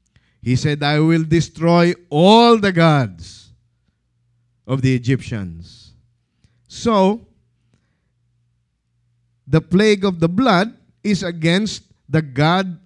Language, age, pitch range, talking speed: English, 50-69, 110-165 Hz, 100 wpm